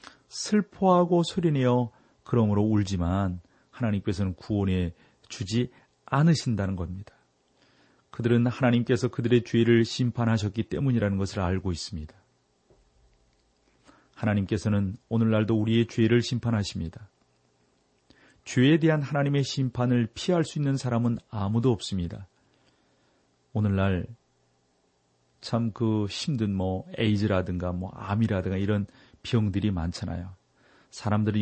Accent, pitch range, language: native, 95-125 Hz, Korean